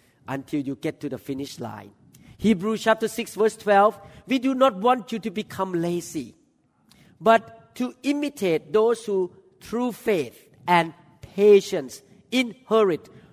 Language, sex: English, male